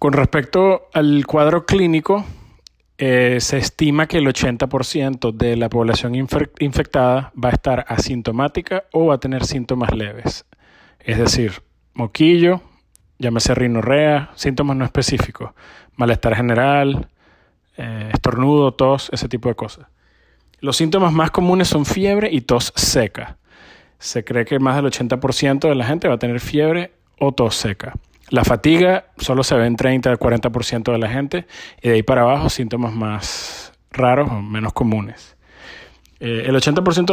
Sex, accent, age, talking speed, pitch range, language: male, Argentinian, 30-49, 145 wpm, 120-155 Hz, Spanish